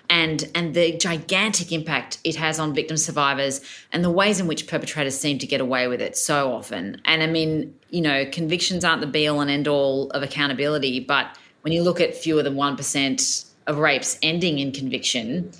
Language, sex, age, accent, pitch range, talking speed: English, female, 30-49, Australian, 150-190 Hz, 200 wpm